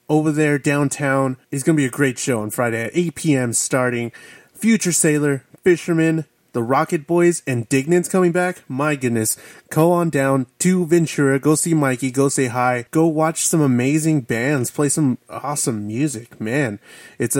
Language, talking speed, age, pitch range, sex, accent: English, 170 wpm, 20-39, 130-165 Hz, male, American